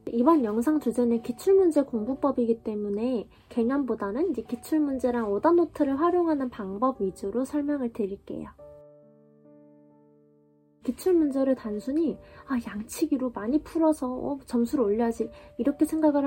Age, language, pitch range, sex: 20-39, Korean, 220-305 Hz, female